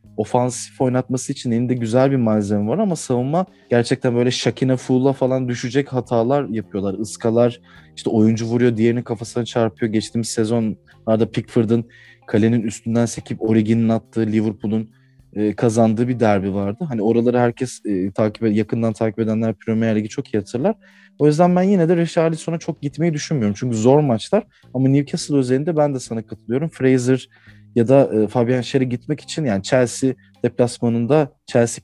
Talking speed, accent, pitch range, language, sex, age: 155 wpm, native, 105-130 Hz, Turkish, male, 30-49